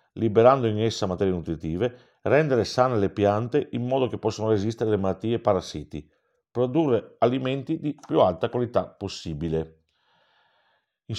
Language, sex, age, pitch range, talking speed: Italian, male, 50-69, 95-125 Hz, 140 wpm